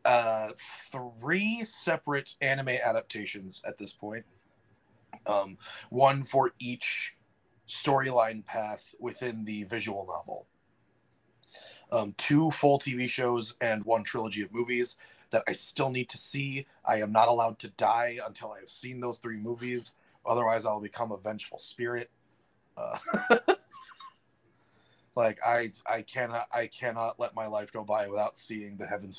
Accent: American